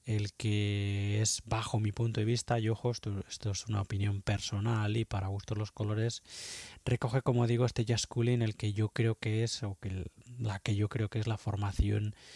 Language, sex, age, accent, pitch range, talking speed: Spanish, male, 20-39, Spanish, 105-120 Hz, 215 wpm